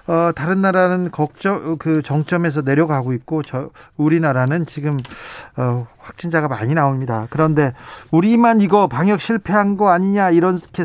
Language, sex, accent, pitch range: Korean, male, native, 135-180 Hz